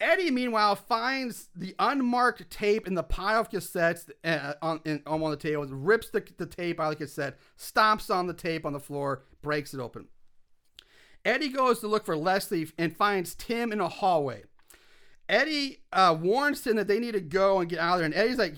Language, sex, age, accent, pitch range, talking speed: English, male, 40-59, American, 165-230 Hz, 200 wpm